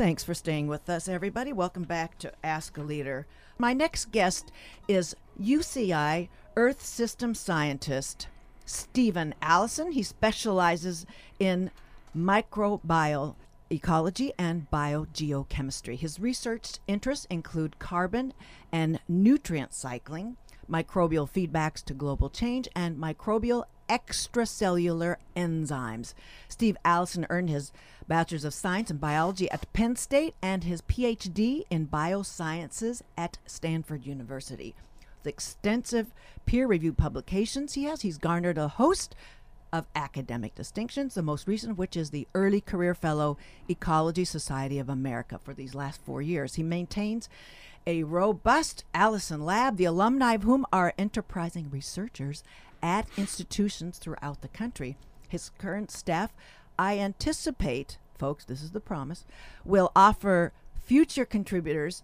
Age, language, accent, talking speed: 50-69, English, American, 125 wpm